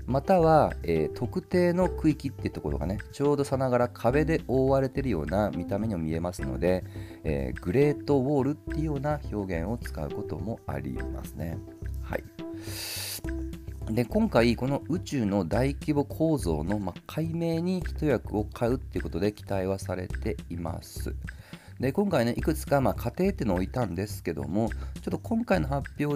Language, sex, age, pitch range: Japanese, male, 40-59, 90-135 Hz